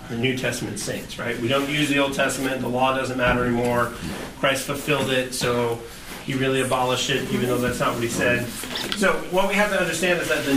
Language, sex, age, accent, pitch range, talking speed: English, male, 30-49, American, 120-150 Hz, 225 wpm